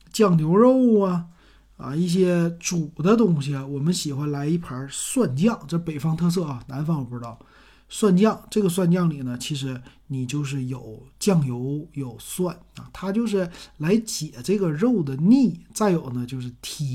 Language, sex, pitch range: Chinese, male, 135-185 Hz